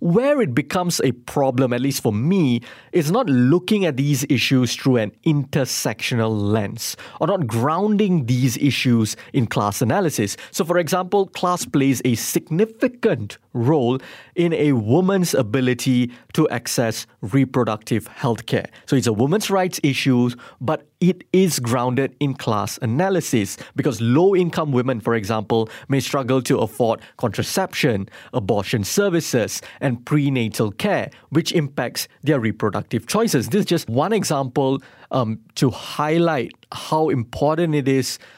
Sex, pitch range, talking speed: male, 120-160 Hz, 140 wpm